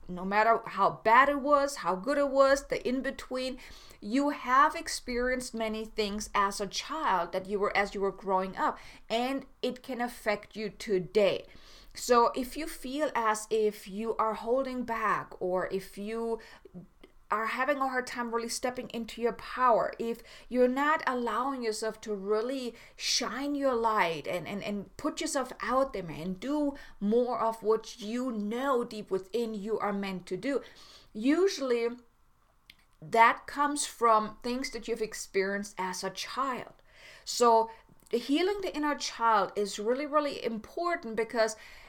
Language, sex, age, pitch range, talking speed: English, female, 30-49, 210-260 Hz, 160 wpm